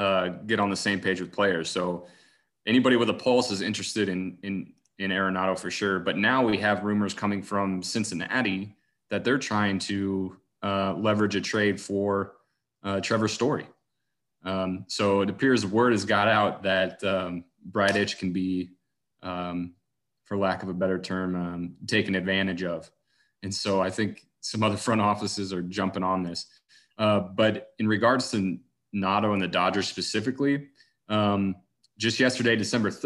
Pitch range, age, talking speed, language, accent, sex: 95-105 Hz, 30-49, 165 wpm, English, American, male